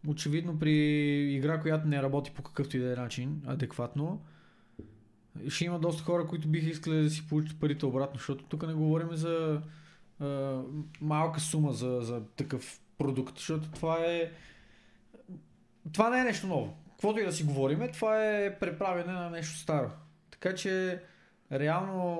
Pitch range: 145-175 Hz